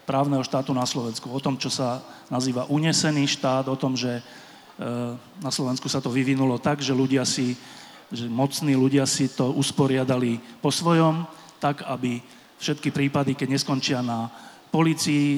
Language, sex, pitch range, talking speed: Slovak, male, 130-160 Hz, 150 wpm